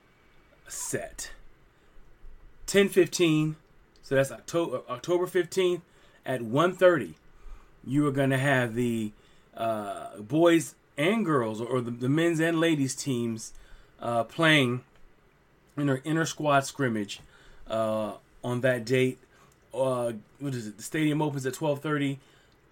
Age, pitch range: 30-49, 125-155 Hz